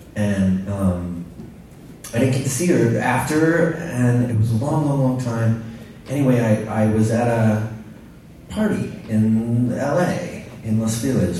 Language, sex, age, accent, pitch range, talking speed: English, male, 30-49, American, 110-150 Hz, 155 wpm